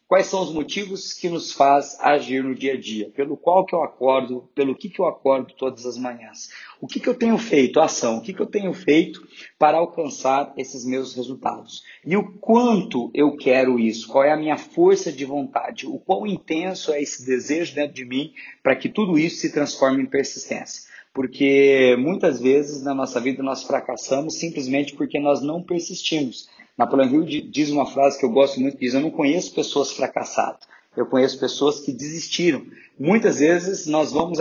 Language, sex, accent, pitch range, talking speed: Portuguese, male, Brazilian, 135-170 Hz, 195 wpm